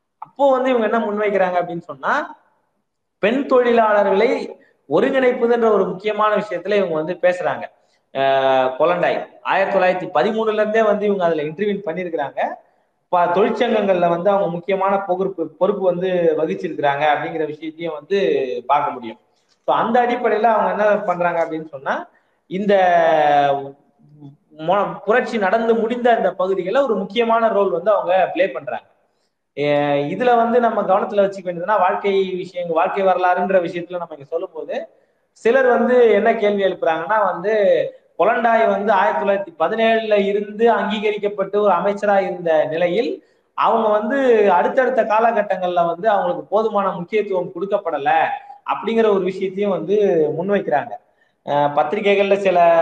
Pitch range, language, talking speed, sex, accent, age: 175-220 Hz, Tamil, 125 wpm, male, native, 20-39